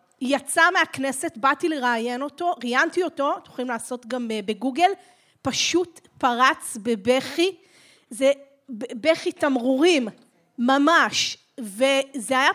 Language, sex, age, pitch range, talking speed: Hebrew, female, 30-49, 230-300 Hz, 100 wpm